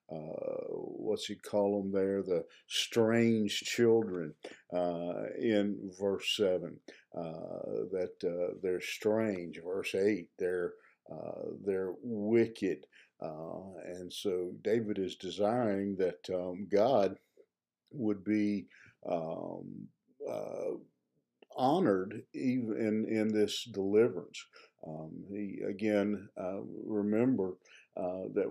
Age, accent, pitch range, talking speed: 50-69, American, 95-115 Hz, 105 wpm